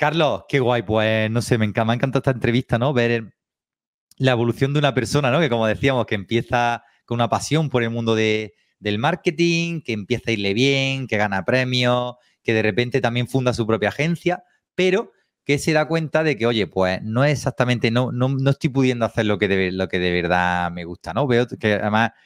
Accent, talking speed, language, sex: Spanish, 215 wpm, Spanish, male